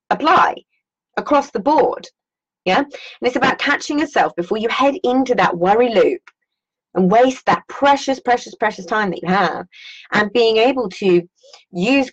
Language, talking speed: English, 160 wpm